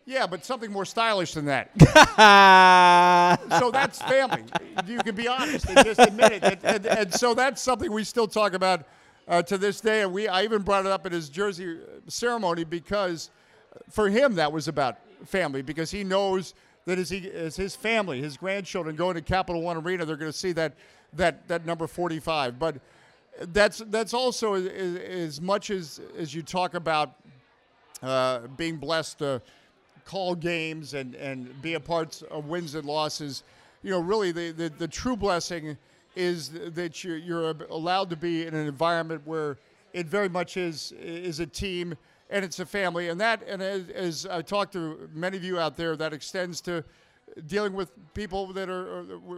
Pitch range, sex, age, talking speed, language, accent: 165-200 Hz, male, 50-69, 190 wpm, English, American